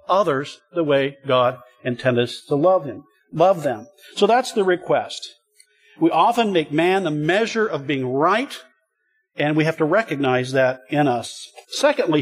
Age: 50-69